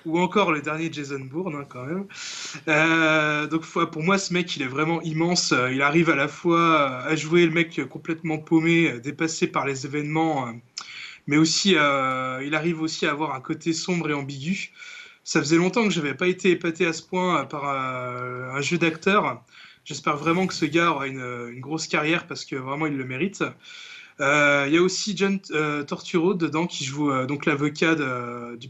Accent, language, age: French, French, 20-39